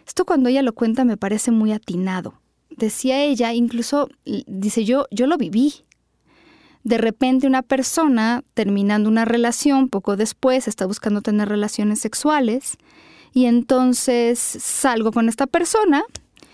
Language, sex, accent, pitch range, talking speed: Spanish, female, Mexican, 220-270 Hz, 135 wpm